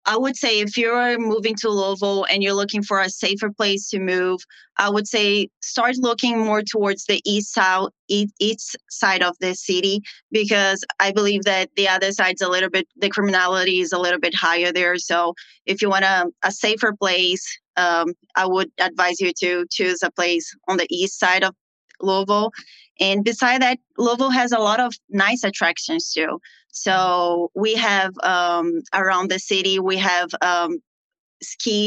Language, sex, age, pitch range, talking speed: English, female, 20-39, 180-205 Hz, 175 wpm